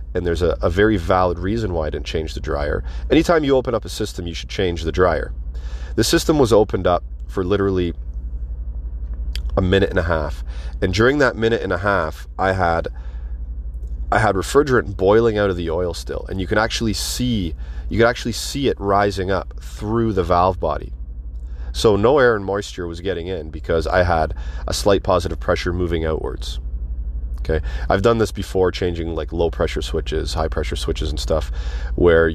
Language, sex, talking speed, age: English, male, 190 wpm, 30-49